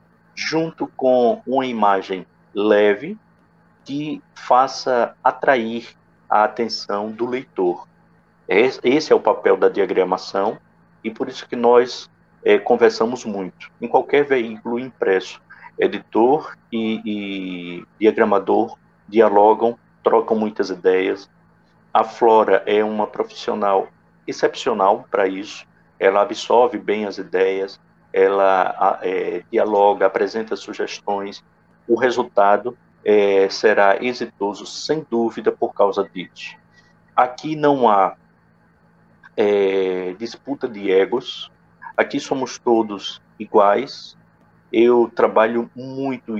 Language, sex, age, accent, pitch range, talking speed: Portuguese, male, 50-69, Brazilian, 100-130 Hz, 105 wpm